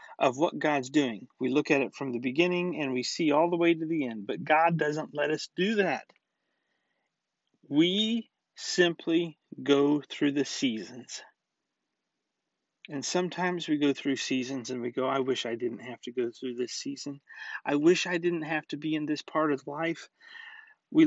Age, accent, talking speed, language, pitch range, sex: 40-59, American, 185 wpm, English, 135-170 Hz, male